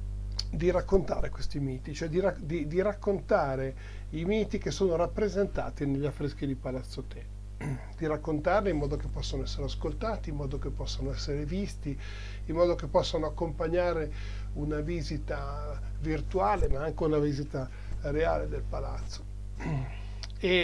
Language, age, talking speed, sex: Italian, 50-69, 145 wpm, male